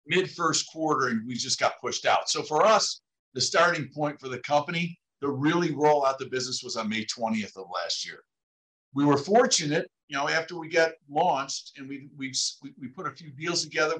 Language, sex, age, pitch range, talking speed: English, male, 60-79, 125-160 Hz, 210 wpm